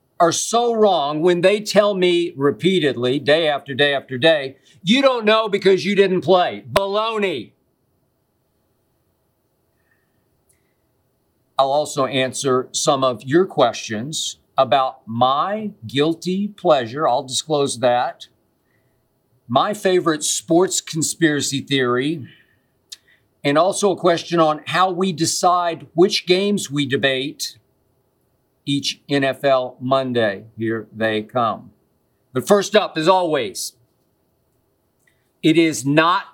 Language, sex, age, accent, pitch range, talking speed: English, male, 50-69, American, 135-180 Hz, 110 wpm